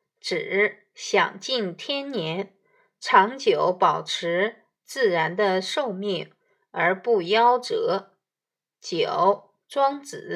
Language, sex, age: Chinese, female, 20-39